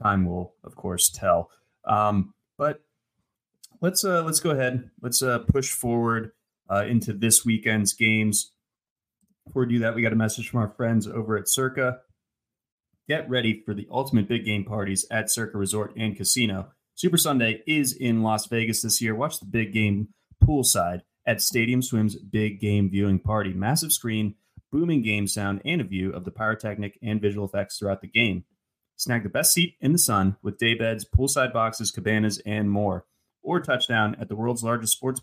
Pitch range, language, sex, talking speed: 105-130 Hz, English, male, 180 wpm